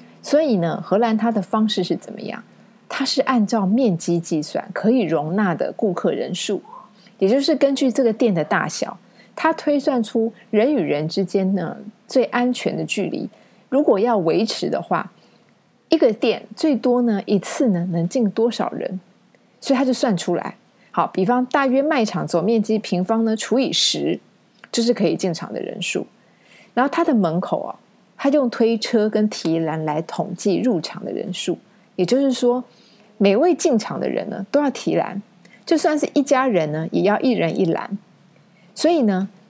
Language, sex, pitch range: Chinese, female, 185-255 Hz